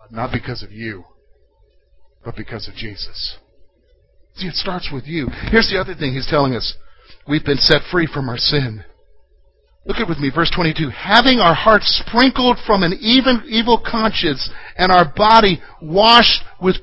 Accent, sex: American, male